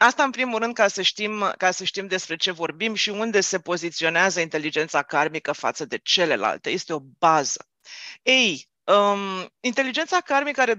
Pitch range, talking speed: 165-225 Hz, 150 wpm